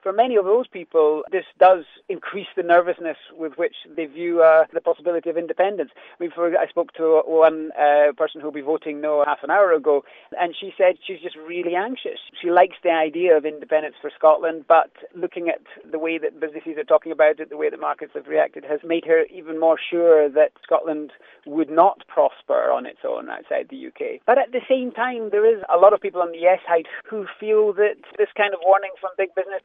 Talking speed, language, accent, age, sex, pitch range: 225 wpm, English, British, 30-49, male, 155-200 Hz